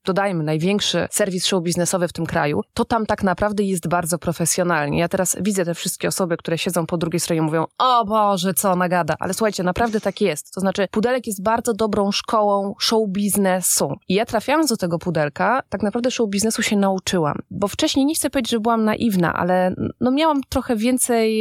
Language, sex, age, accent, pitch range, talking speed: Polish, female, 20-39, native, 180-230 Hz, 200 wpm